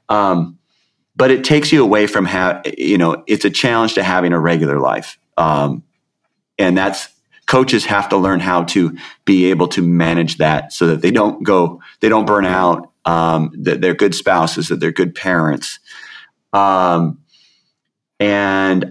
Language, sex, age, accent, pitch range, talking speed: English, male, 30-49, American, 85-105 Hz, 165 wpm